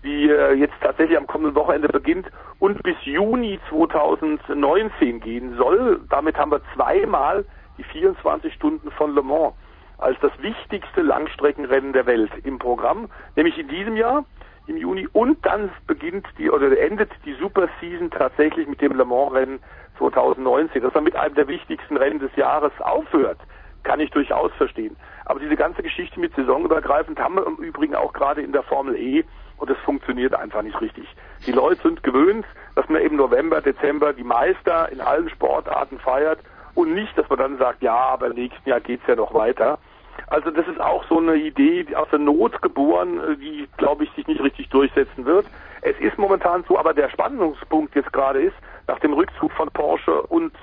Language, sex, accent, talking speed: German, male, German, 185 wpm